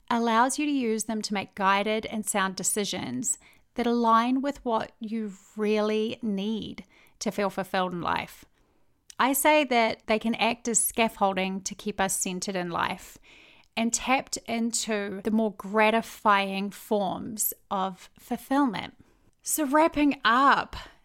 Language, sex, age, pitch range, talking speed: English, female, 30-49, 200-245 Hz, 140 wpm